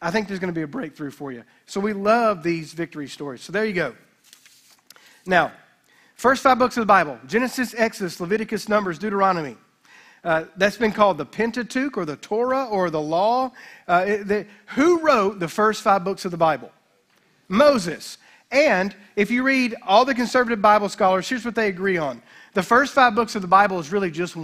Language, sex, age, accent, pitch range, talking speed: English, male, 40-59, American, 190-235 Hz, 195 wpm